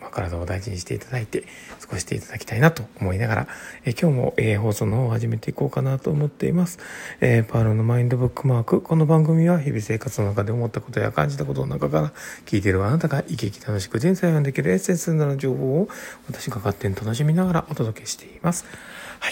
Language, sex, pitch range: Japanese, male, 105-140 Hz